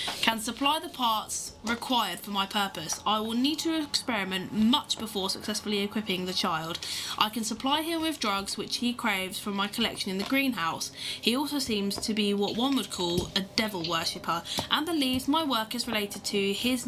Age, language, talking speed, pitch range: 10-29, English, 190 wpm, 185-255 Hz